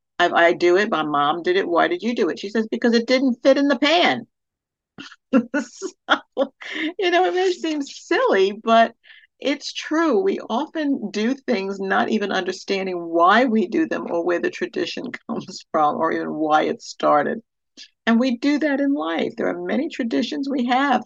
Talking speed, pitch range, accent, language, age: 180 wpm, 175-270 Hz, American, English, 60-79